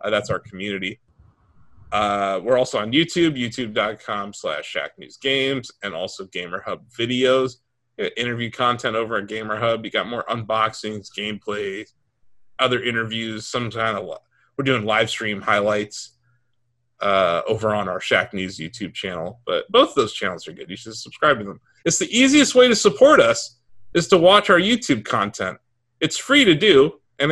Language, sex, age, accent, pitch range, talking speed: English, male, 30-49, American, 115-145 Hz, 170 wpm